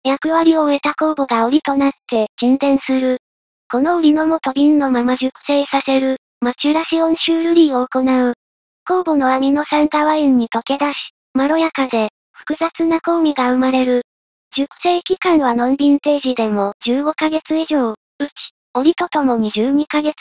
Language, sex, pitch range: Japanese, male, 255-310 Hz